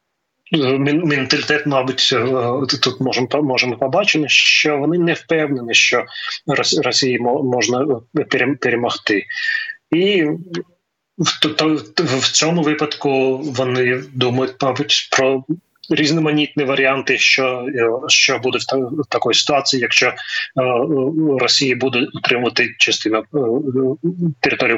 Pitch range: 125-150 Hz